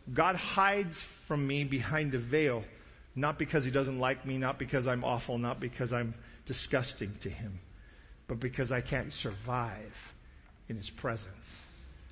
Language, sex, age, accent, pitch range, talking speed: English, male, 40-59, American, 115-165 Hz, 155 wpm